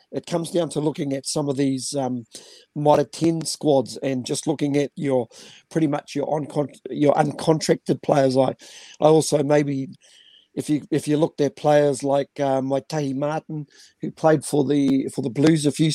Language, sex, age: English, male, 50-69